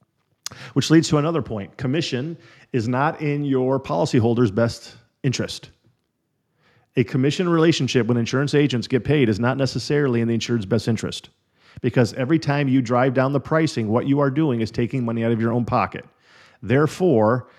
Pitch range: 120-145 Hz